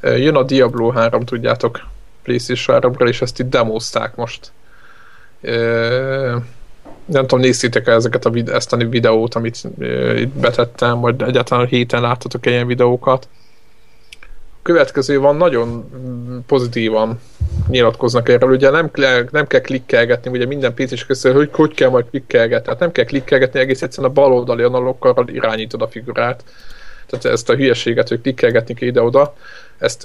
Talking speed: 140 wpm